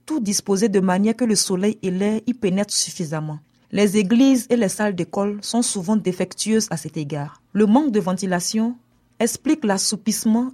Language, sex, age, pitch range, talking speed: French, female, 40-59, 180-225 Hz, 170 wpm